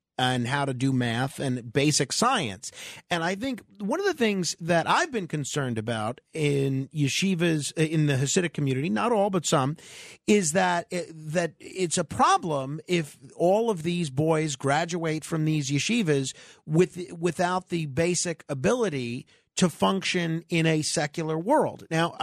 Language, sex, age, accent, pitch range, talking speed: English, male, 40-59, American, 140-175 Hz, 155 wpm